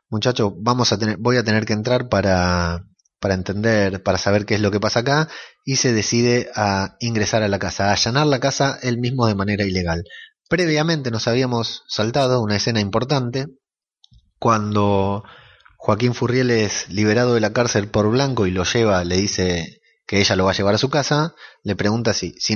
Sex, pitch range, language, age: male, 100-130 Hz, Spanish, 20-39